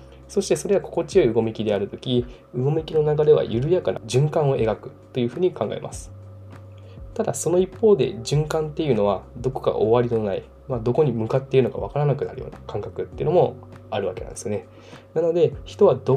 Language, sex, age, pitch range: Japanese, male, 20-39, 110-155 Hz